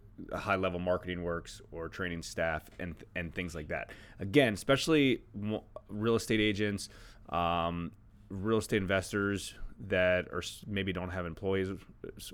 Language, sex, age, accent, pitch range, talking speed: English, male, 30-49, American, 90-110 Hz, 125 wpm